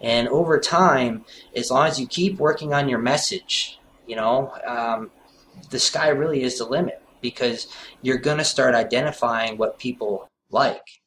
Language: English